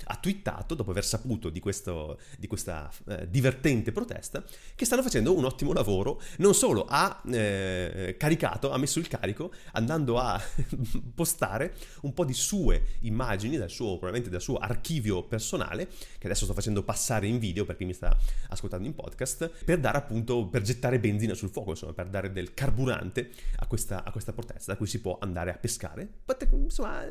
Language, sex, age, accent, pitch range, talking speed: Italian, male, 30-49, native, 100-145 Hz, 180 wpm